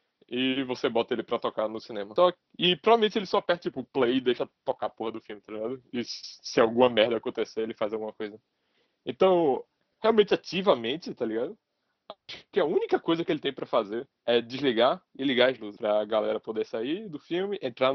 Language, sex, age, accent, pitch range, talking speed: Portuguese, male, 20-39, Brazilian, 115-165 Hz, 205 wpm